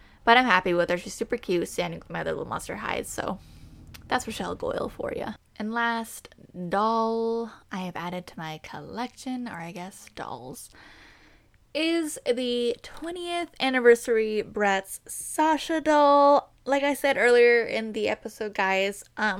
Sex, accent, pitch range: female, American, 190-250 Hz